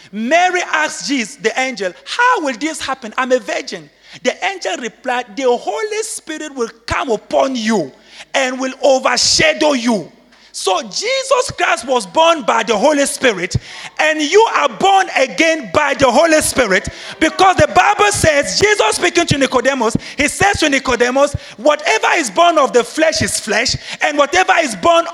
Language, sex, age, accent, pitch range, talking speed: English, male, 30-49, Nigerian, 270-360 Hz, 160 wpm